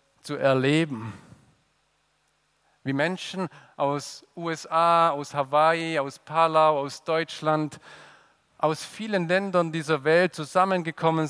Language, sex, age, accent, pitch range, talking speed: German, male, 40-59, German, 135-180 Hz, 95 wpm